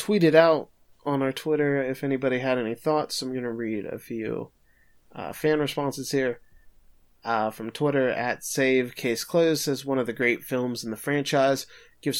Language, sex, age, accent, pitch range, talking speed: English, male, 20-39, American, 115-140 Hz, 180 wpm